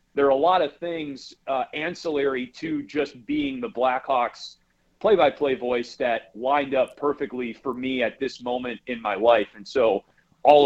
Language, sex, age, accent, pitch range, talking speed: English, male, 40-59, American, 125-150 Hz, 180 wpm